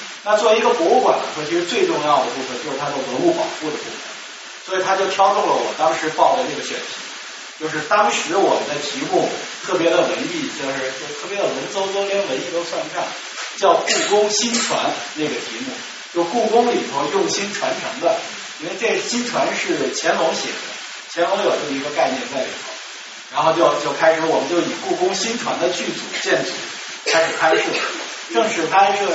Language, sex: Chinese, male